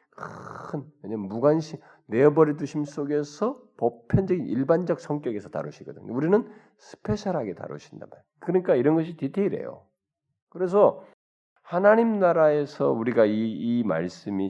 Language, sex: Korean, male